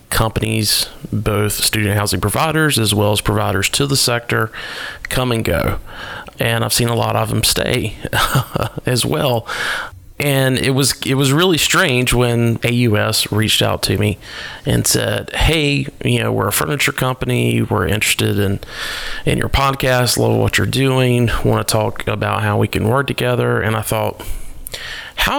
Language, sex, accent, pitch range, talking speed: English, male, American, 105-125 Hz, 165 wpm